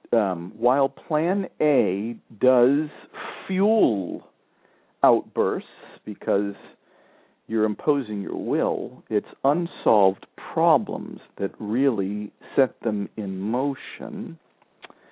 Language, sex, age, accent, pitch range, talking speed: English, male, 50-69, American, 105-135 Hz, 85 wpm